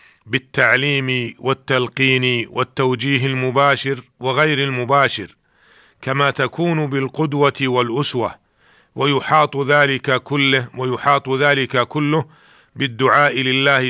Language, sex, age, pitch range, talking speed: Arabic, male, 40-59, 125-140 Hz, 80 wpm